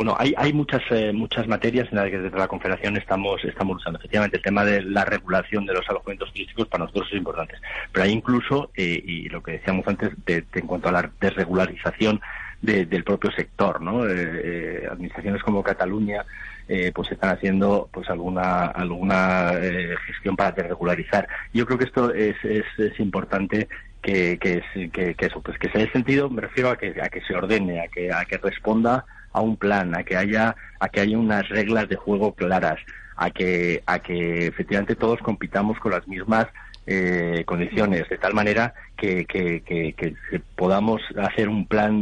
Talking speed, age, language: 190 wpm, 30-49, Spanish